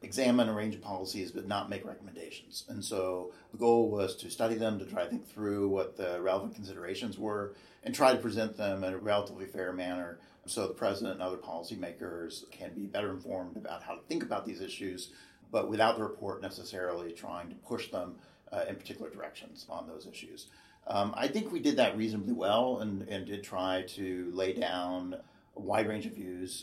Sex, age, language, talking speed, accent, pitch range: male, 40-59, English, 205 wpm, American, 90-110 Hz